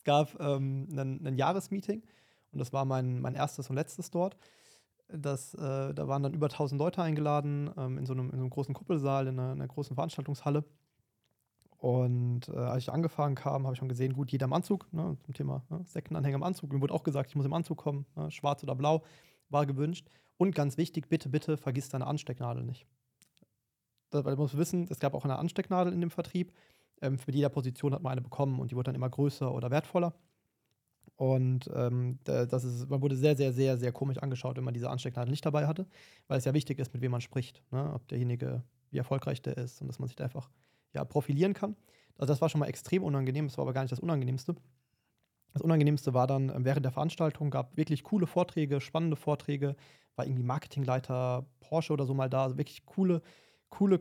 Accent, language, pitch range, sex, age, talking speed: German, German, 130-155 Hz, male, 30-49, 215 wpm